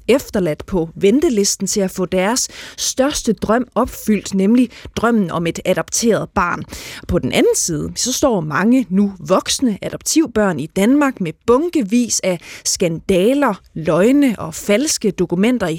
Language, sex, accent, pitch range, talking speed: Danish, female, native, 185-245 Hz, 140 wpm